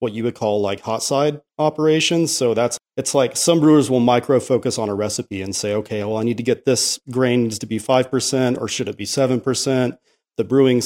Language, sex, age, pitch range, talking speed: English, male, 40-59, 115-130 Hz, 220 wpm